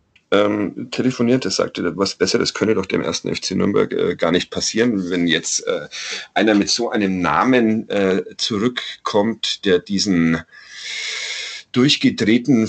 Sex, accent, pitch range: male, German, 105-145 Hz